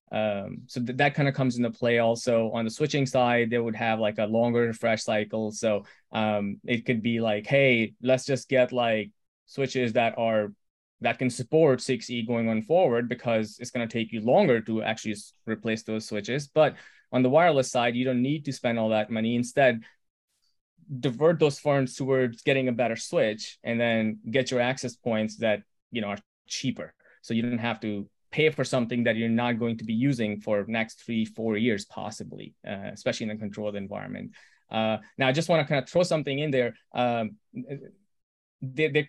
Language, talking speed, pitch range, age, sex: English, 200 wpm, 115-140 Hz, 20-39, male